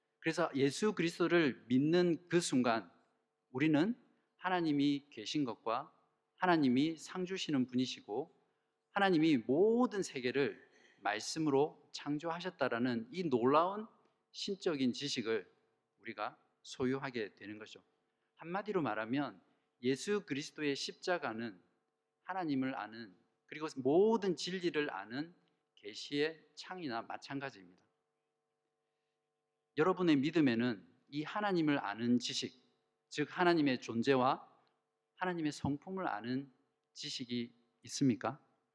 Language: Korean